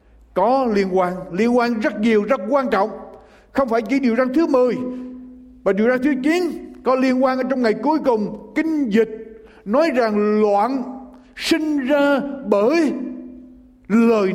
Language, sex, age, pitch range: Japanese, male, 60-79, 215-285 Hz